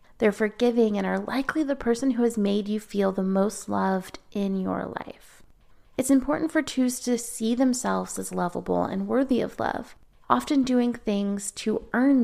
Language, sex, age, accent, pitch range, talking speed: English, female, 30-49, American, 200-250 Hz, 175 wpm